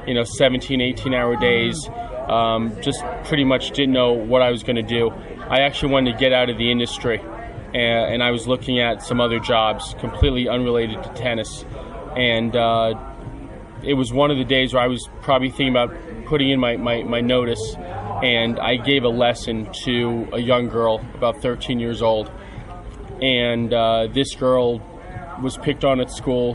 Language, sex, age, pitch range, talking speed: English, male, 20-39, 115-130 Hz, 180 wpm